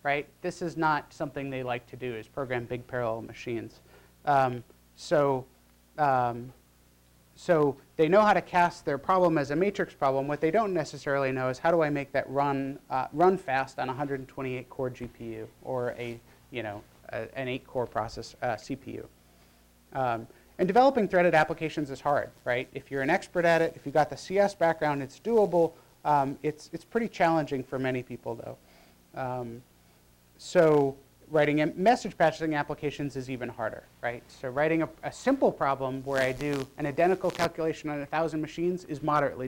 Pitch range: 130-165 Hz